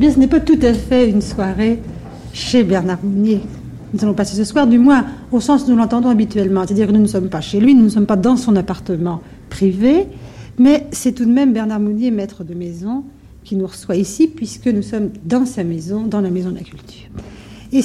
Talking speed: 230 wpm